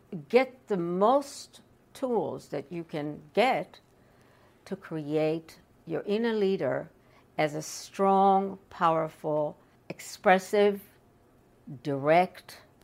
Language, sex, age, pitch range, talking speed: English, female, 60-79, 155-205 Hz, 90 wpm